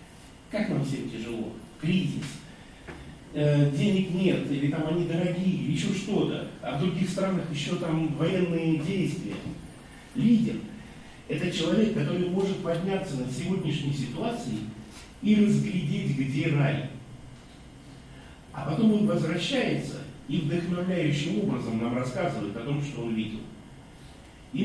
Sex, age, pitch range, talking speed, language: male, 40-59, 145-210 Hz, 115 wpm, Russian